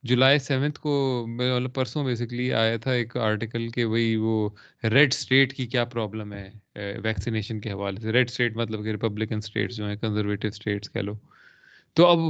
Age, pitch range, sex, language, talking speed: 20-39, 115-155 Hz, male, Urdu, 175 wpm